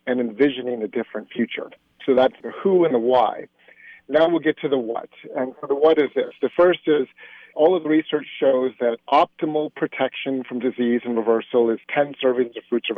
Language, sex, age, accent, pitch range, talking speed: English, male, 50-69, American, 120-150 Hz, 205 wpm